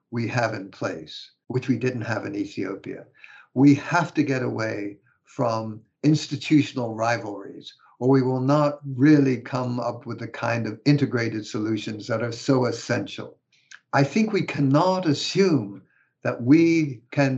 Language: English